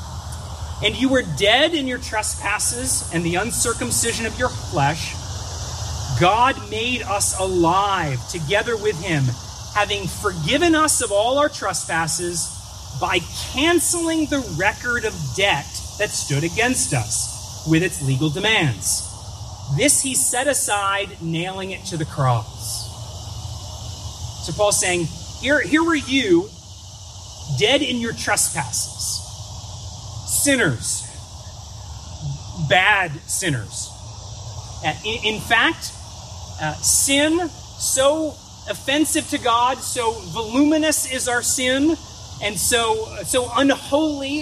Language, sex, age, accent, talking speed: English, male, 30-49, American, 110 wpm